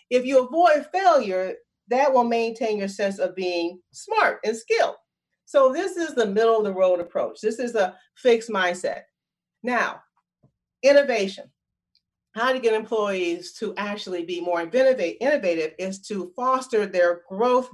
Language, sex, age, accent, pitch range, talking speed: English, female, 40-59, American, 195-280 Hz, 150 wpm